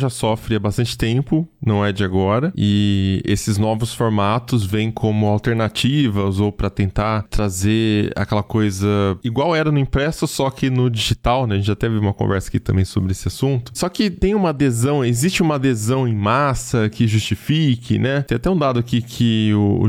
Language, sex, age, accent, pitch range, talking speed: Portuguese, male, 20-39, Brazilian, 105-140 Hz, 185 wpm